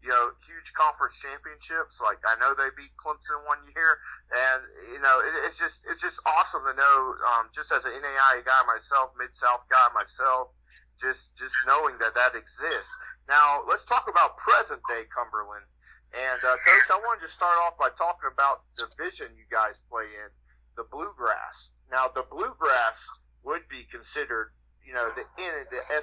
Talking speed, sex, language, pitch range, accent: 175 wpm, male, English, 100-150 Hz, American